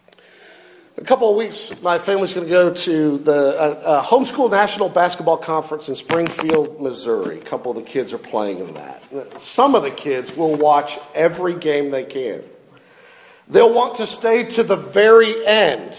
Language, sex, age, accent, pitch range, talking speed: English, male, 50-69, American, 165-265 Hz, 175 wpm